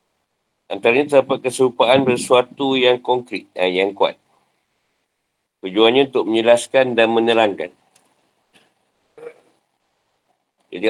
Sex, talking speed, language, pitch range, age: male, 85 wpm, Malay, 105-130 Hz, 50-69